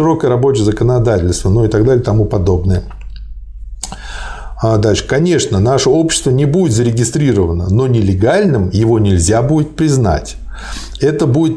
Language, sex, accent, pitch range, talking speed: Russian, male, native, 105-140 Hz, 125 wpm